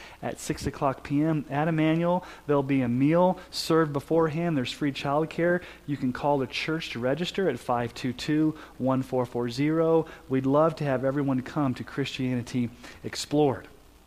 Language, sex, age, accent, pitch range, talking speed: English, male, 30-49, American, 130-180 Hz, 145 wpm